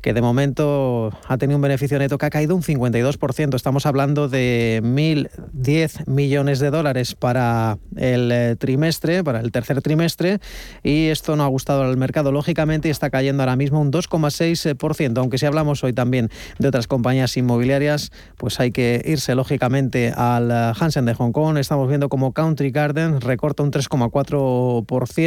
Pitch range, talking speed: 125-155 Hz, 165 wpm